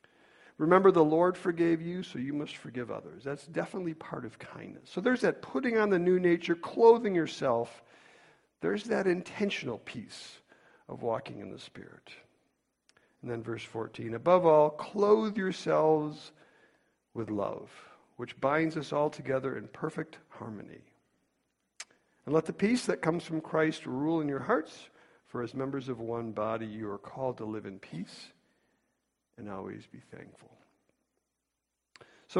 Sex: male